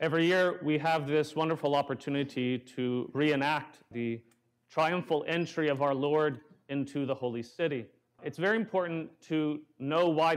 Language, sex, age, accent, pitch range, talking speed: English, male, 40-59, American, 140-170 Hz, 145 wpm